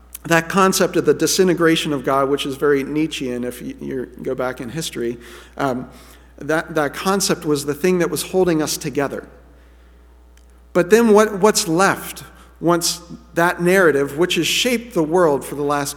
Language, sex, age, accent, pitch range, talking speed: English, male, 50-69, American, 125-175 Hz, 170 wpm